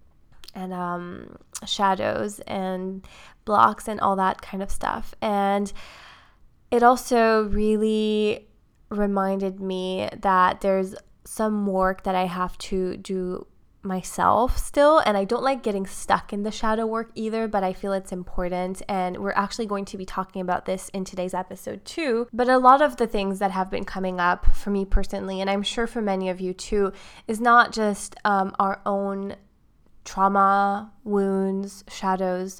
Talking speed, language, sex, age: 160 wpm, English, female, 20-39